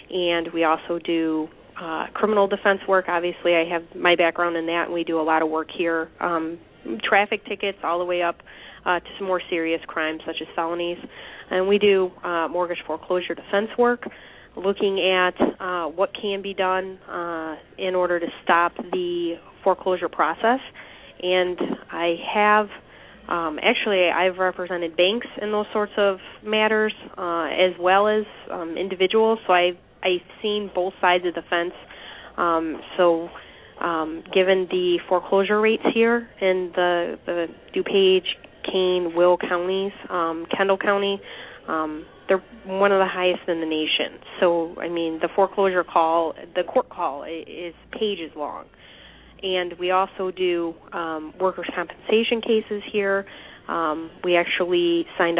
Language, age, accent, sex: English, 30-49, American, female